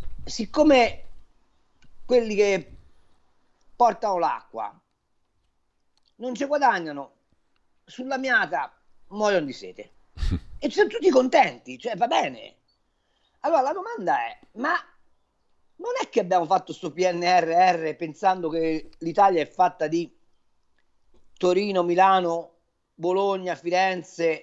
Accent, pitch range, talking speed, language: native, 165-215 Hz, 105 wpm, Italian